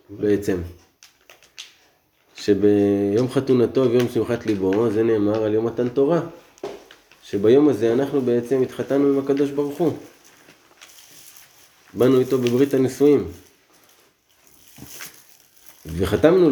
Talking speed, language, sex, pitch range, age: 95 wpm, Hebrew, male, 100-130 Hz, 20-39